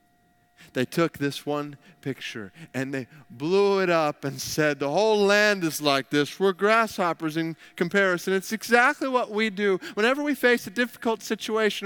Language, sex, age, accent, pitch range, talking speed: English, male, 30-49, American, 170-235 Hz, 165 wpm